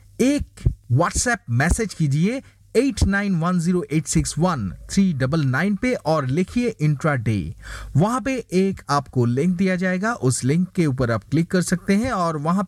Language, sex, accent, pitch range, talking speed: Hindi, male, native, 135-220 Hz, 135 wpm